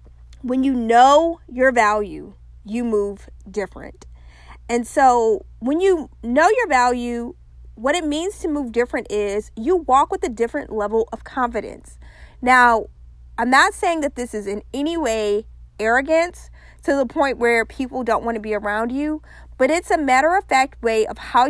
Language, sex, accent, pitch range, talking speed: English, female, American, 215-280 Hz, 170 wpm